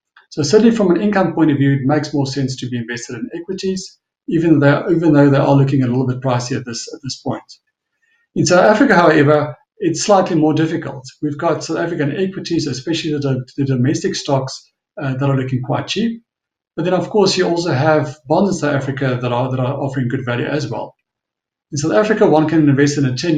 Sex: male